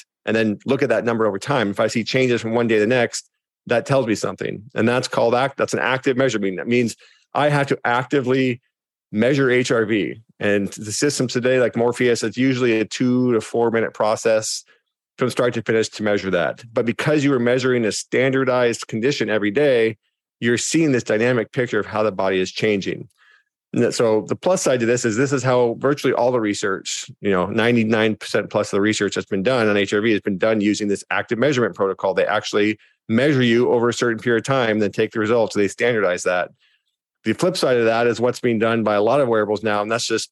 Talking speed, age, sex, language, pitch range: 225 wpm, 40-59, male, English, 105-130 Hz